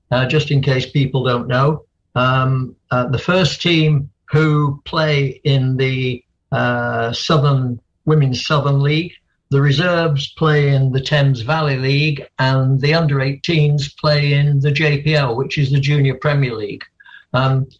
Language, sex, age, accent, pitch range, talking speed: English, male, 60-79, British, 130-155 Hz, 145 wpm